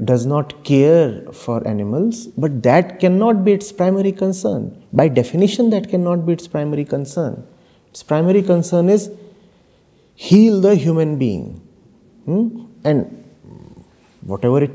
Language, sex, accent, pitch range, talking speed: English, male, Indian, 130-180 Hz, 130 wpm